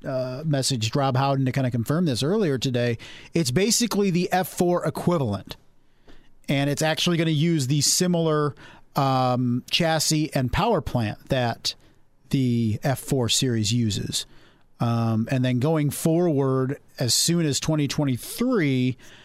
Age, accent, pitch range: 40-59, American, 130-160 Hz